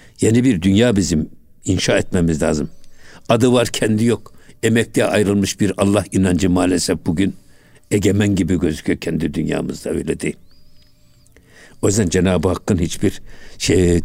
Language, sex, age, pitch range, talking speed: Turkish, male, 60-79, 90-130 Hz, 130 wpm